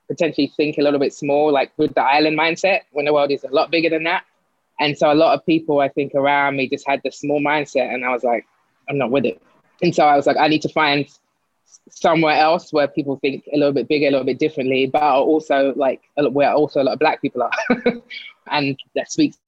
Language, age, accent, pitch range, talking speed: English, 20-39, British, 130-155 Hz, 245 wpm